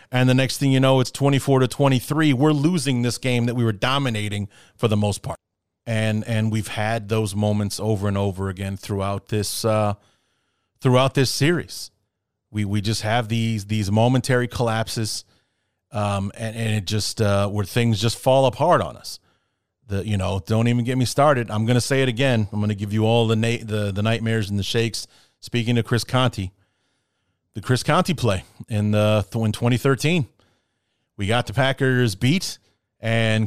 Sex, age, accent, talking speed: male, 30-49, American, 190 wpm